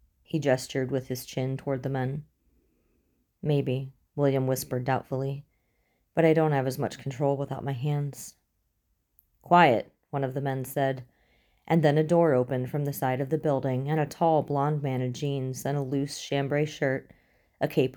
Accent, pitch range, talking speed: American, 130-150 Hz, 175 wpm